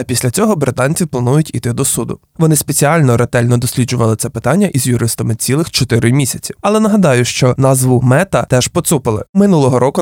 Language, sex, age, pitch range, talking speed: Ukrainian, male, 20-39, 120-160 Hz, 170 wpm